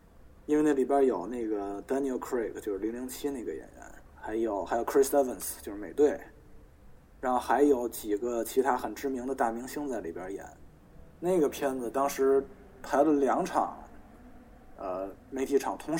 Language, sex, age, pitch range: Chinese, male, 20-39, 115-155 Hz